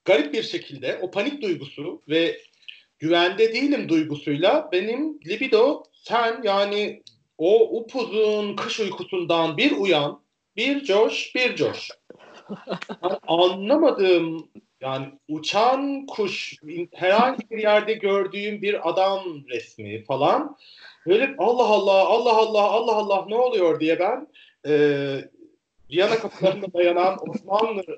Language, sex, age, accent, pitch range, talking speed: Turkish, male, 40-59, native, 160-225 Hz, 110 wpm